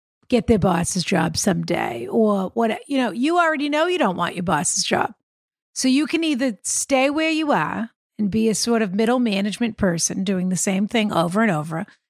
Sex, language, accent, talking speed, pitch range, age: female, English, American, 205 wpm, 195-275 Hz, 50-69